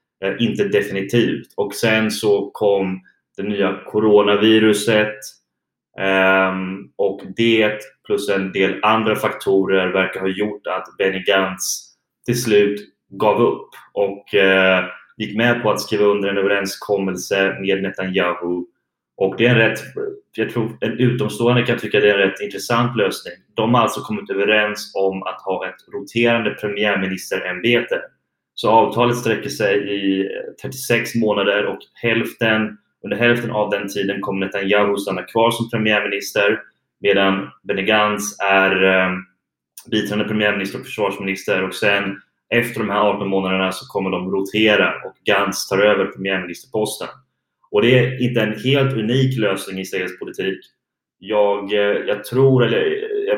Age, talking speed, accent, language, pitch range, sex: 20-39, 145 wpm, Swedish, English, 95-110 Hz, male